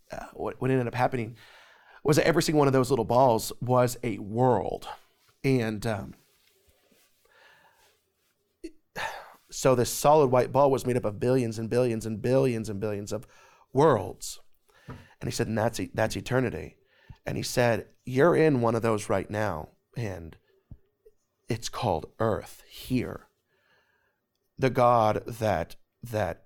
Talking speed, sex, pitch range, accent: 145 wpm, male, 110-140 Hz, American